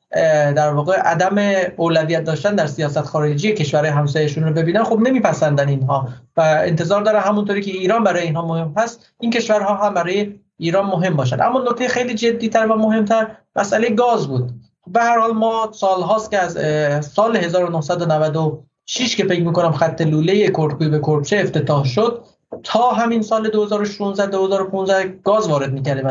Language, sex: Persian, male